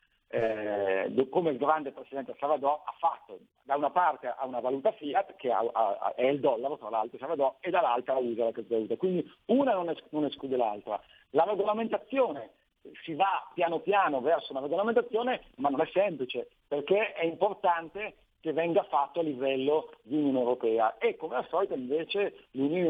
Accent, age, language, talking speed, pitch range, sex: native, 50-69, Italian, 175 wpm, 130-205 Hz, male